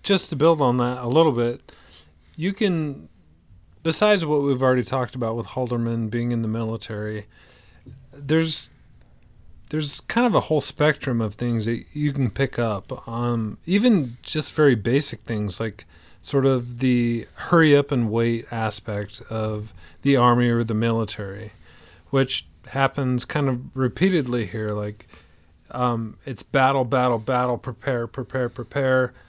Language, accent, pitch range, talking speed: English, American, 105-130 Hz, 150 wpm